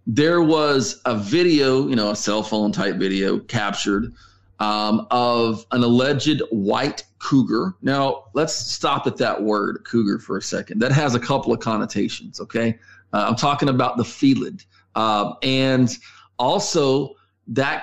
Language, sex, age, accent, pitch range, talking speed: English, male, 40-59, American, 110-145 Hz, 150 wpm